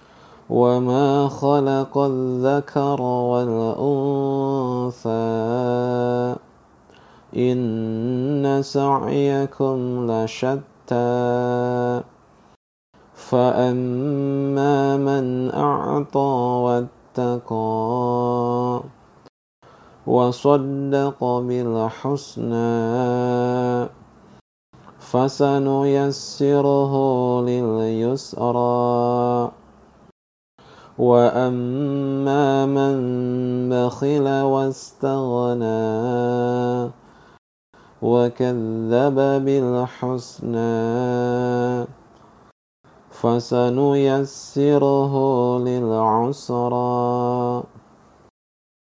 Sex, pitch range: male, 120-135 Hz